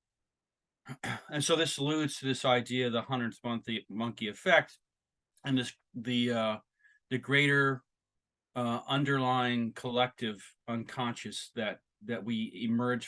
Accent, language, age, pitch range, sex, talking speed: American, English, 30-49, 115-140 Hz, male, 120 wpm